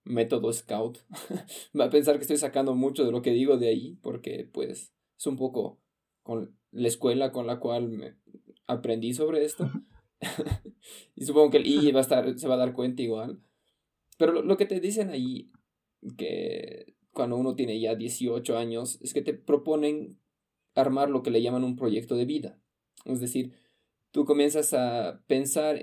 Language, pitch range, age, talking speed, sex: Spanish, 125-150 Hz, 20-39, 180 wpm, male